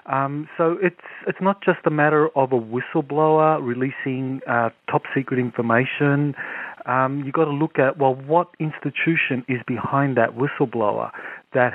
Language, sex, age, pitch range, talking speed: English, male, 40-59, 125-150 Hz, 150 wpm